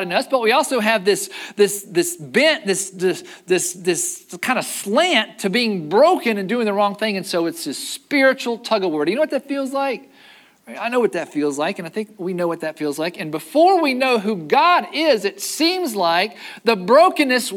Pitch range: 190-290 Hz